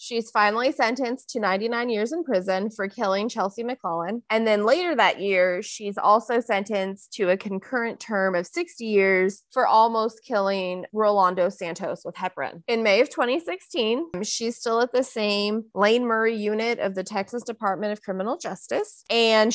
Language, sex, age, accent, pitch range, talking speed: English, female, 20-39, American, 195-240 Hz, 165 wpm